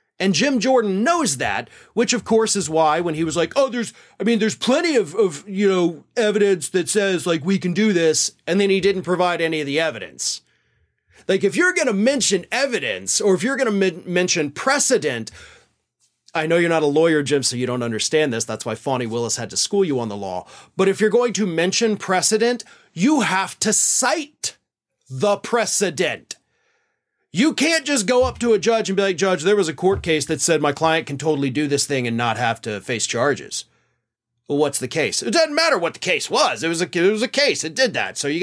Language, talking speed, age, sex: English, 225 wpm, 30-49, male